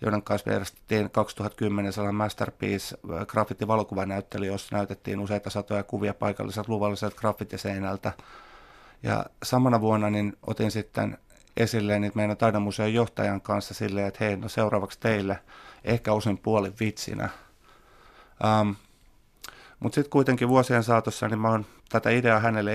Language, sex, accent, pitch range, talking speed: Finnish, male, native, 100-115 Hz, 125 wpm